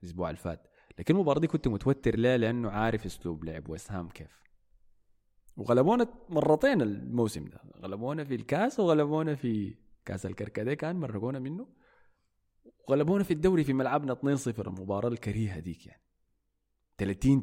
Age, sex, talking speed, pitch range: 20-39, male, 140 wpm, 95-120 Hz